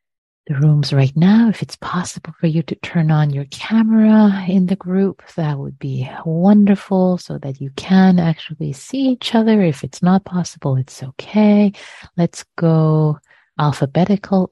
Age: 30-49